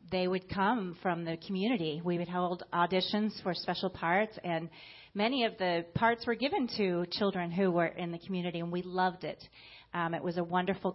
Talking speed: 195 wpm